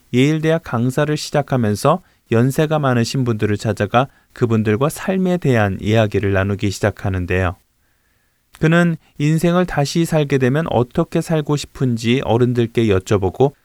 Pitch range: 110-155 Hz